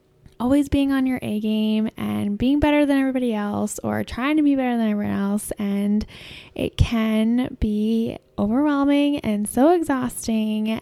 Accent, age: American, 10-29